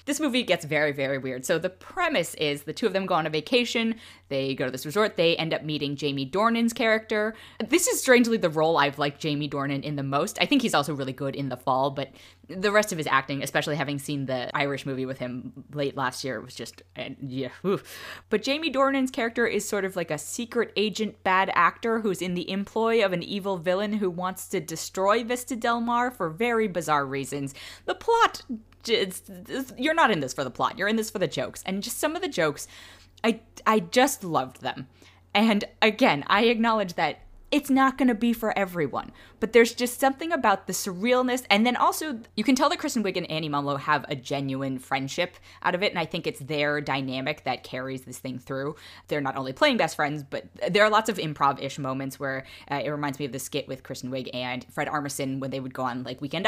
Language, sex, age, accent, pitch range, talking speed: English, female, 10-29, American, 140-225 Hz, 225 wpm